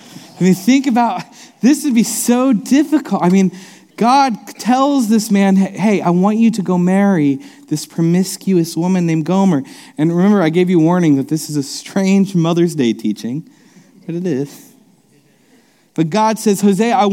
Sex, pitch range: male, 185-245 Hz